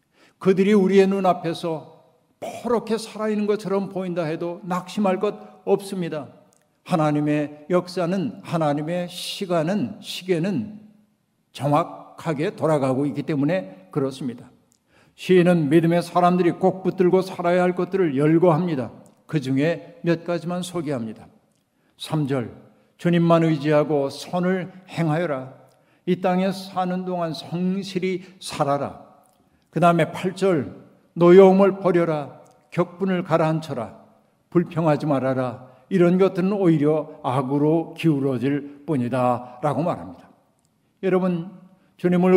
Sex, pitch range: male, 155-185 Hz